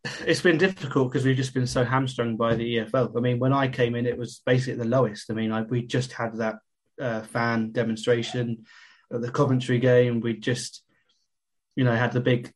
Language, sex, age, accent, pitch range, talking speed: English, male, 20-39, British, 115-125 Hz, 205 wpm